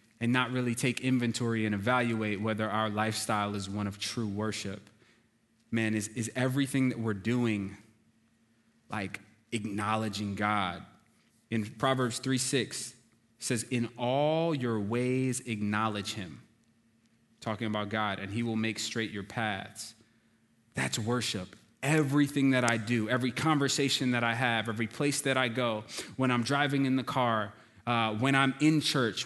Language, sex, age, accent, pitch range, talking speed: English, male, 20-39, American, 110-135 Hz, 150 wpm